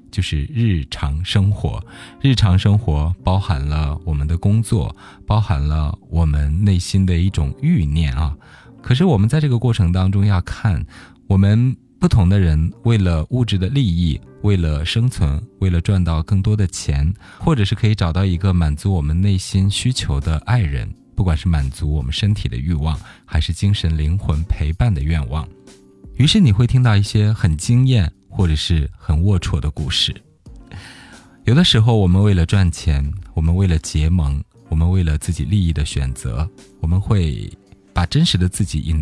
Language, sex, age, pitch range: Chinese, male, 20-39, 80-105 Hz